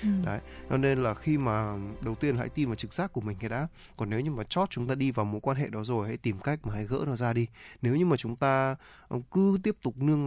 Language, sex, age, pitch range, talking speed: Vietnamese, male, 20-39, 110-145 Hz, 275 wpm